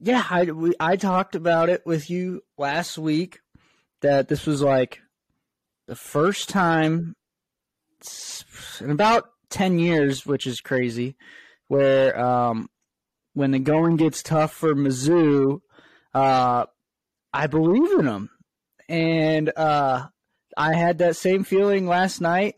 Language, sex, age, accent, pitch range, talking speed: English, male, 20-39, American, 135-170 Hz, 125 wpm